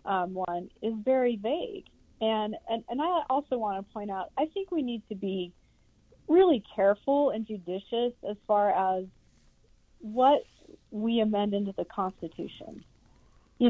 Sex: female